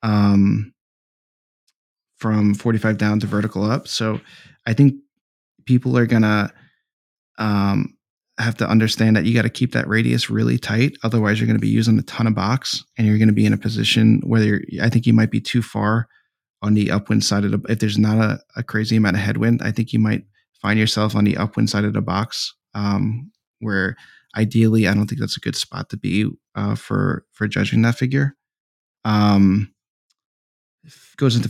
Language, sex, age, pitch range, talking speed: English, male, 20-39, 105-115 Hz, 200 wpm